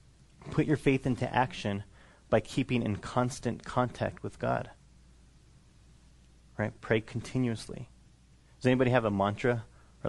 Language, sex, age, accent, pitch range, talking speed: English, male, 30-49, American, 110-125 Hz, 125 wpm